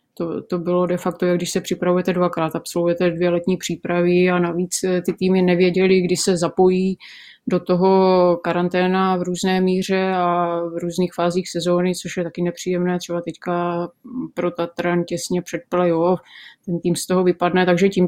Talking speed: 170 wpm